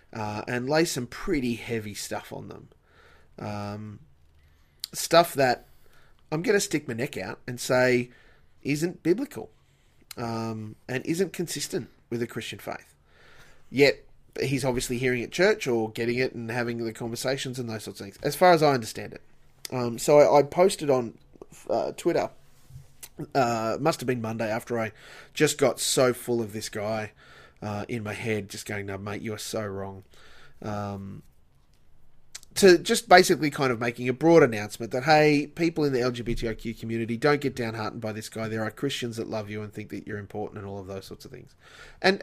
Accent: Australian